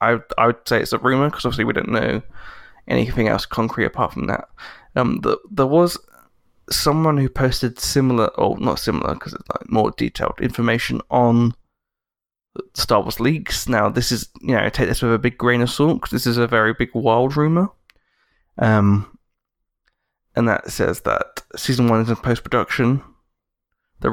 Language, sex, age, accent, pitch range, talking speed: English, male, 20-39, British, 115-130 Hz, 180 wpm